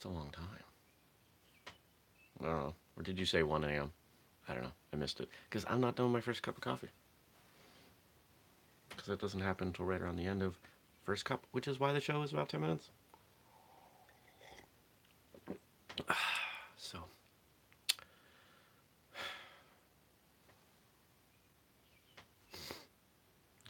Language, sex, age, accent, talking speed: English, male, 30-49, American, 125 wpm